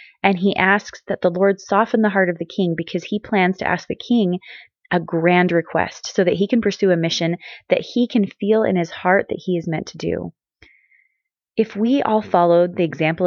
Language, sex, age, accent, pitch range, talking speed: English, female, 20-39, American, 170-210 Hz, 215 wpm